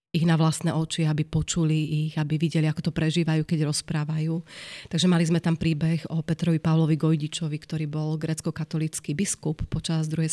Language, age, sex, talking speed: Slovak, 30-49, female, 170 wpm